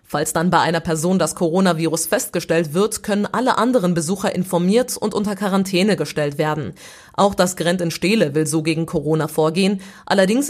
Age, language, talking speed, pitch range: 30-49, German, 170 wpm, 165-210 Hz